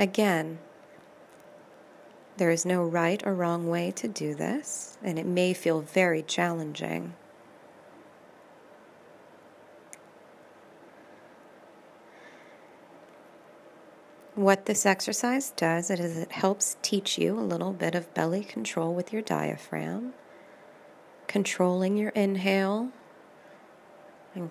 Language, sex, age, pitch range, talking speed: English, female, 30-49, 170-200 Hz, 95 wpm